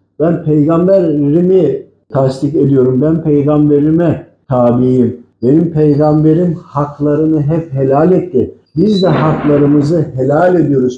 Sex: male